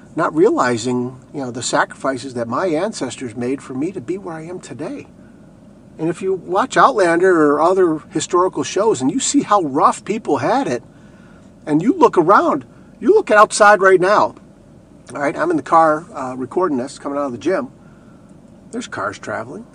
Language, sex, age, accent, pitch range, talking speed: English, male, 50-69, American, 115-155 Hz, 185 wpm